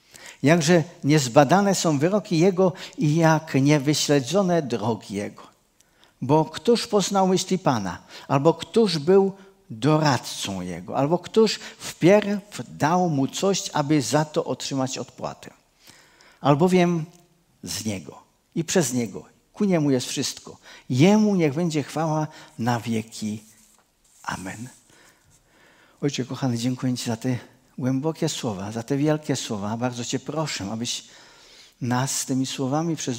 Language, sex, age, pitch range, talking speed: Czech, male, 50-69, 125-170 Hz, 125 wpm